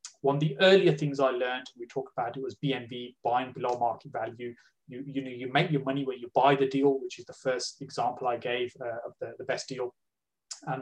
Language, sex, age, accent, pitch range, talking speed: English, male, 20-39, British, 120-140 Hz, 240 wpm